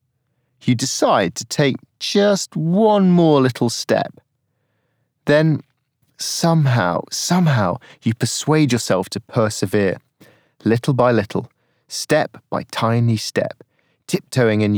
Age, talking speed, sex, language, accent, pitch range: 30-49, 105 wpm, male, English, British, 115-150 Hz